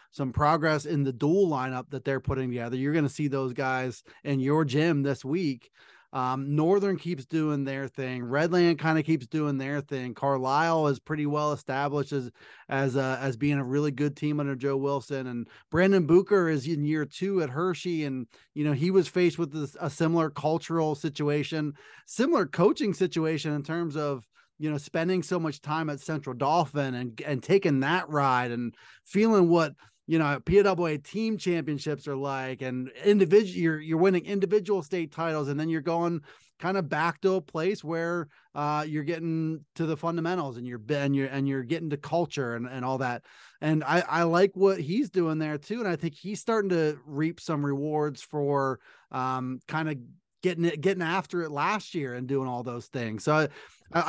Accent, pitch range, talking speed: American, 140-170 Hz, 195 wpm